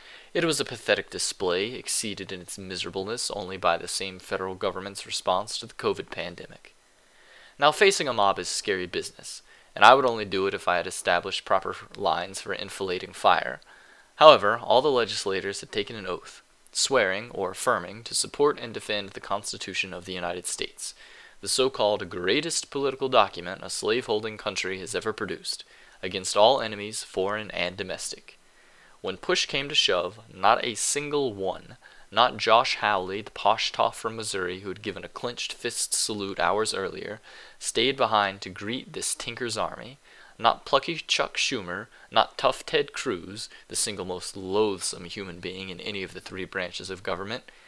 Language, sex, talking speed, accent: English, male, 170 wpm, American